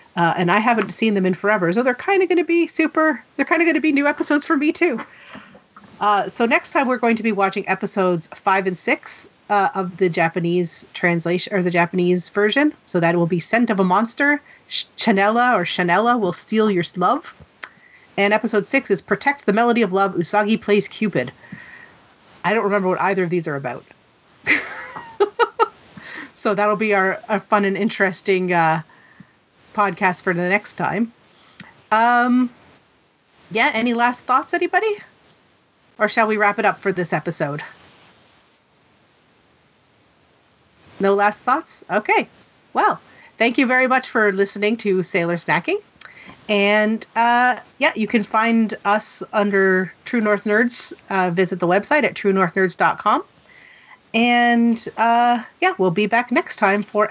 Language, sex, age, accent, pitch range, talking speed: English, female, 40-59, American, 190-250 Hz, 160 wpm